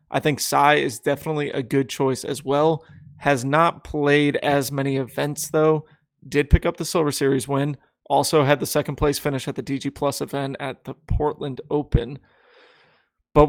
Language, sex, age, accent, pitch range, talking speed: English, male, 30-49, American, 140-155 Hz, 180 wpm